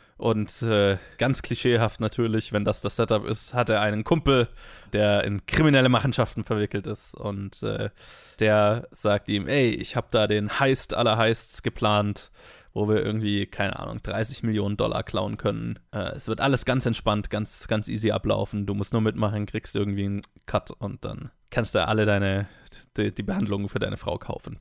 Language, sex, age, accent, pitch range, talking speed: German, male, 20-39, German, 105-120 Hz, 185 wpm